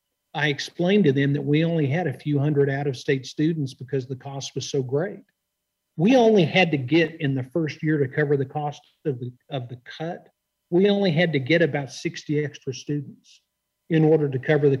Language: English